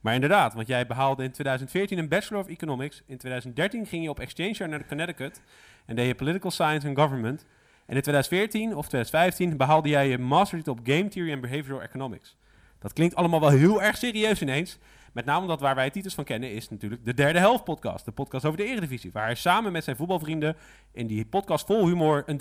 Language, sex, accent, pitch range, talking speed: Dutch, male, Dutch, 120-160 Hz, 215 wpm